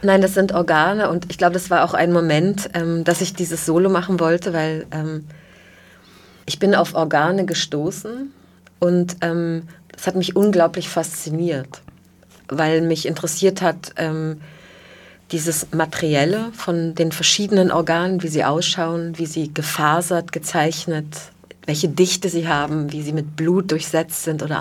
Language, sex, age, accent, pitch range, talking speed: German, female, 30-49, German, 155-175 Hz, 150 wpm